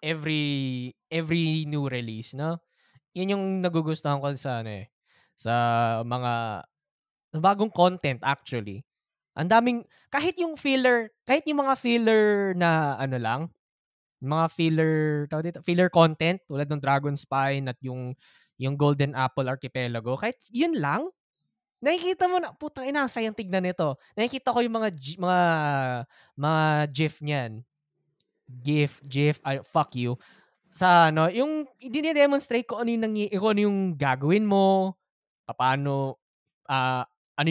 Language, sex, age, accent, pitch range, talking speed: Filipino, male, 20-39, native, 140-205 Hz, 135 wpm